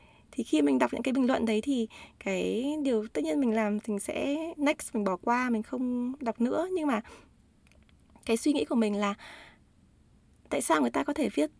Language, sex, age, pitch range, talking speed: Vietnamese, female, 20-39, 215-285 Hz, 210 wpm